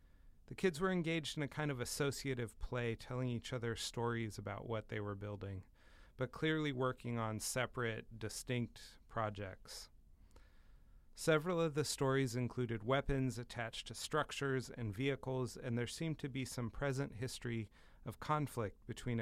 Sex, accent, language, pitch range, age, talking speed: male, American, English, 110-135 Hz, 40-59, 150 wpm